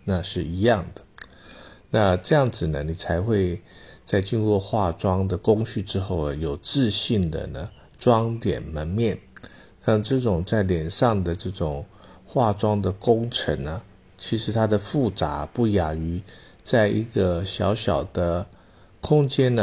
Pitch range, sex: 90-115 Hz, male